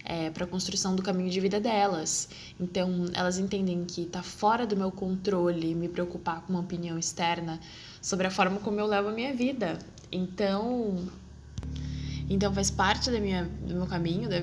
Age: 10-29